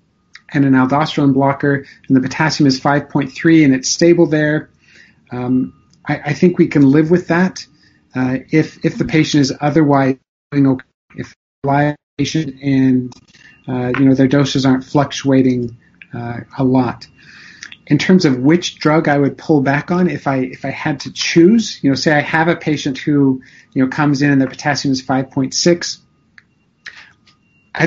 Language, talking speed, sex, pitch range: Persian, 170 wpm, male, 135-155 Hz